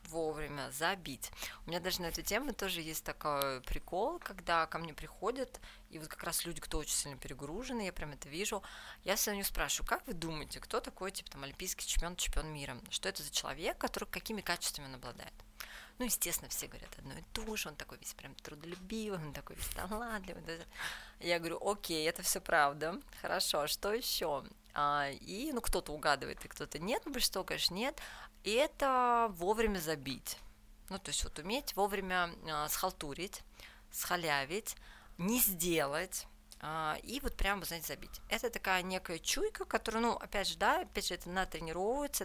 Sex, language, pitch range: female, Russian, 155-210 Hz